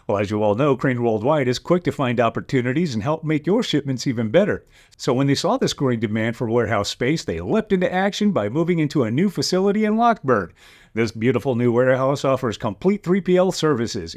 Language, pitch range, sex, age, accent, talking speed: English, 120-175 Hz, male, 40-59, American, 210 wpm